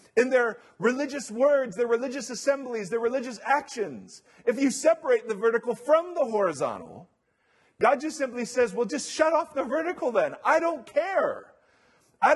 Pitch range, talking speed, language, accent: 185-265 Hz, 160 wpm, English, American